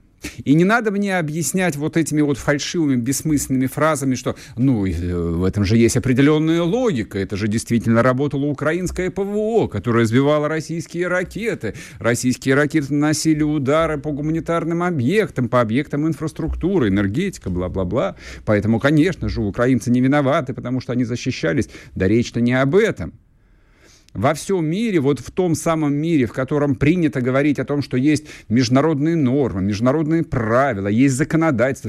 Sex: male